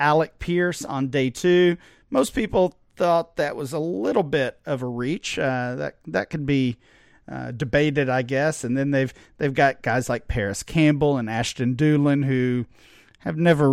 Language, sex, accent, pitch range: English, male, American, 130-155 Hz